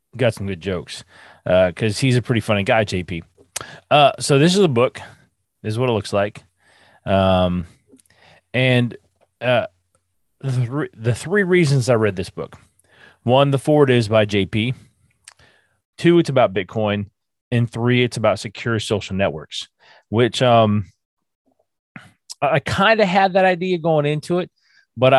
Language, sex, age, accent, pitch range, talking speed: English, male, 30-49, American, 95-130 Hz, 150 wpm